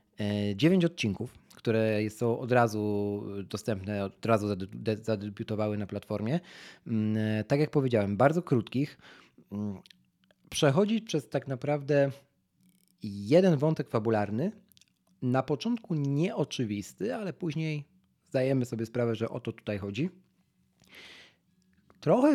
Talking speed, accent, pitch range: 100 wpm, native, 105-140 Hz